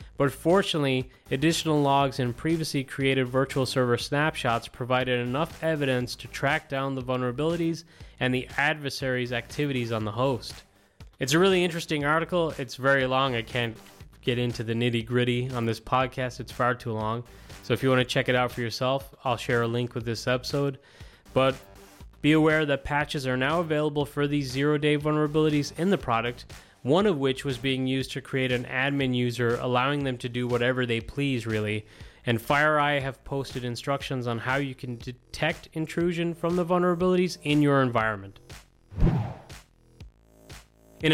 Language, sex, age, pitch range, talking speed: English, male, 20-39, 125-155 Hz, 170 wpm